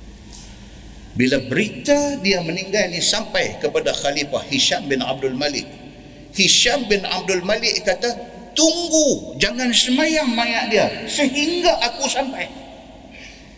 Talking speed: 110 wpm